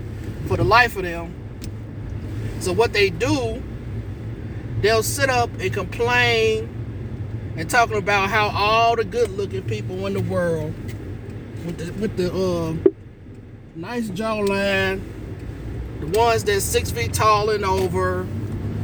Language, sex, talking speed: English, male, 130 wpm